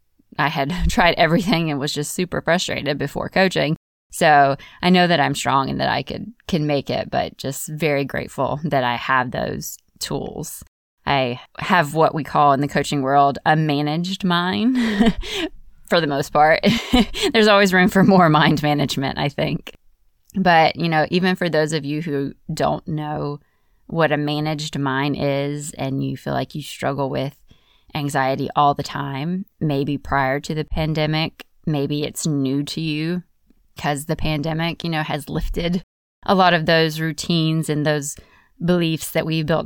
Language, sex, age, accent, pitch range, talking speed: English, female, 20-39, American, 145-175 Hz, 170 wpm